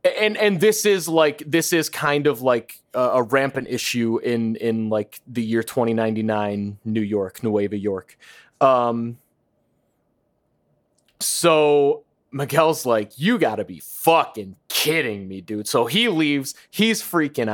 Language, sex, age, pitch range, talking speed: English, male, 20-39, 120-180 Hz, 135 wpm